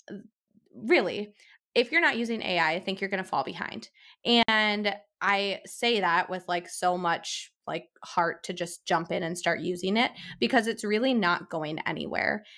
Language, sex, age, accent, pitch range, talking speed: English, female, 20-39, American, 180-230 Hz, 175 wpm